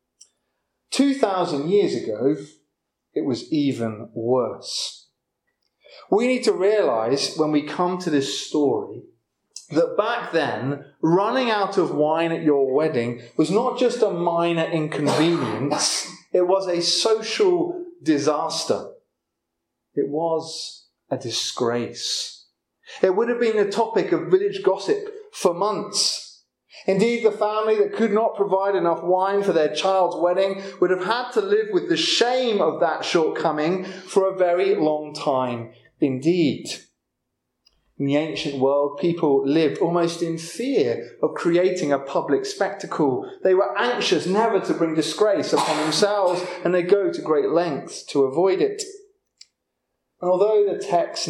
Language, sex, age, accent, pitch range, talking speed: English, male, 30-49, British, 155-225 Hz, 140 wpm